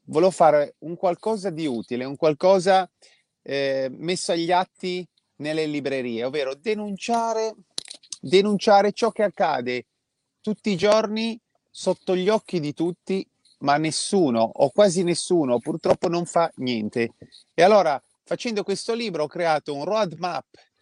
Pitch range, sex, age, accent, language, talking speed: 130-180 Hz, male, 30-49, native, Italian, 135 wpm